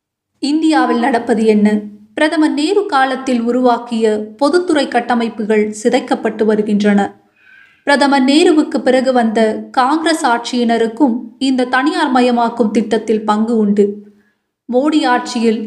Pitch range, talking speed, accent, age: 220-265 Hz, 90 wpm, native, 20-39